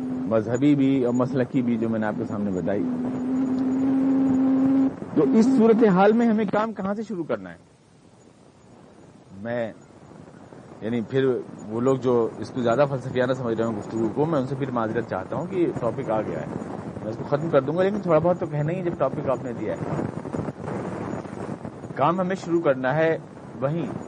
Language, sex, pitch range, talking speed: Urdu, male, 130-175 Hz, 190 wpm